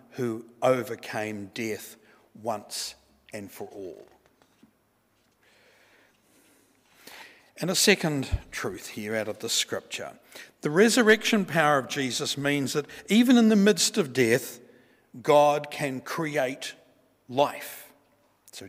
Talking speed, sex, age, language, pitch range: 110 wpm, male, 50-69, English, 125-185 Hz